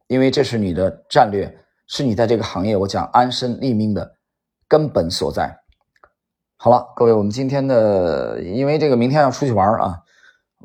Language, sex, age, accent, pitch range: Chinese, male, 20-39, native, 95-125 Hz